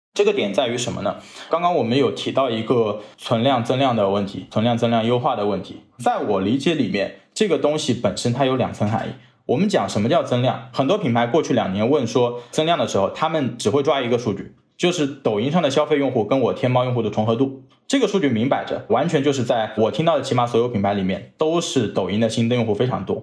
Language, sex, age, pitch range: Chinese, male, 20-39, 110-140 Hz